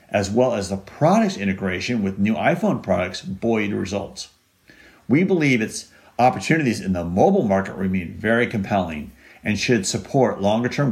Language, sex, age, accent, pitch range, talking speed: English, male, 50-69, American, 95-125 Hz, 150 wpm